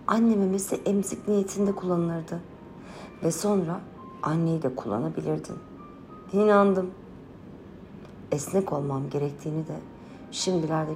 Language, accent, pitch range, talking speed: Turkish, native, 155-210 Hz, 90 wpm